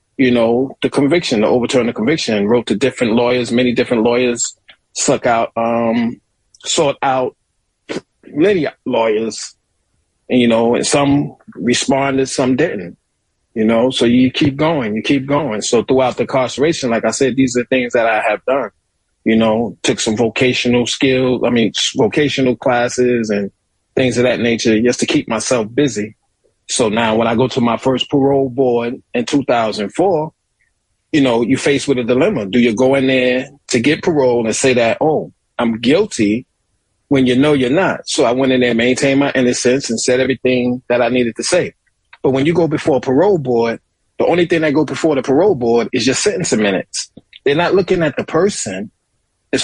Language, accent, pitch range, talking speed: English, American, 115-135 Hz, 185 wpm